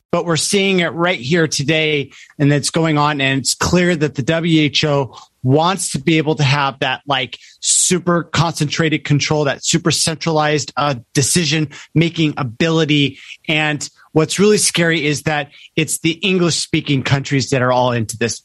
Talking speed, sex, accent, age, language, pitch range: 165 wpm, male, American, 30-49, English, 145-175 Hz